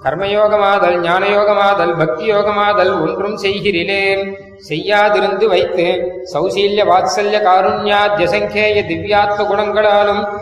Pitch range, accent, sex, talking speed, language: 180-205 Hz, native, male, 60 wpm, Tamil